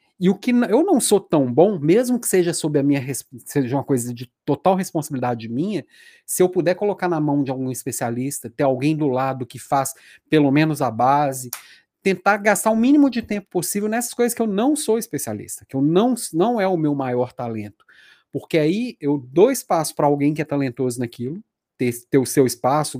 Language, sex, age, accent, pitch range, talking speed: Portuguese, male, 40-59, Brazilian, 135-190 Hz, 205 wpm